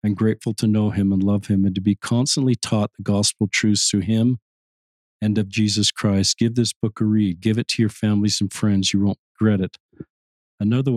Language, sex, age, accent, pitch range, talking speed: English, male, 40-59, American, 100-115 Hz, 215 wpm